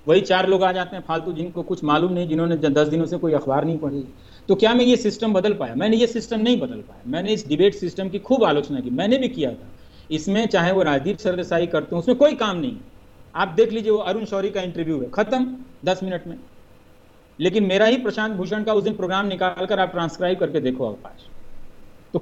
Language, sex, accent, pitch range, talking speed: Hindi, male, native, 160-225 Hz, 230 wpm